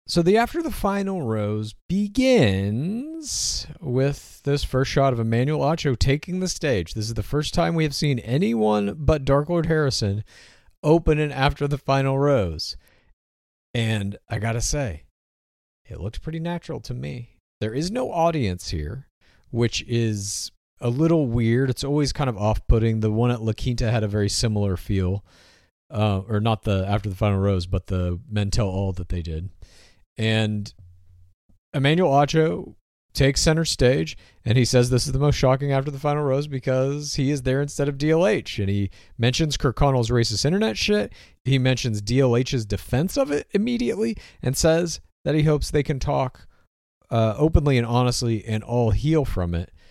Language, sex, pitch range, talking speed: English, male, 100-145 Hz, 175 wpm